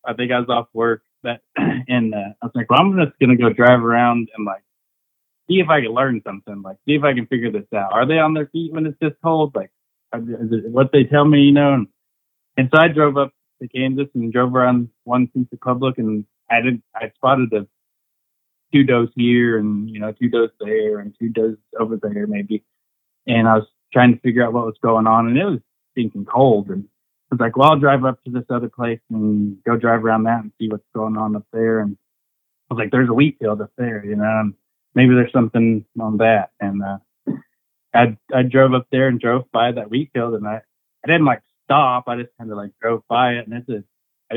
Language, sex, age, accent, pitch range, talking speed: English, male, 20-39, American, 110-130 Hz, 240 wpm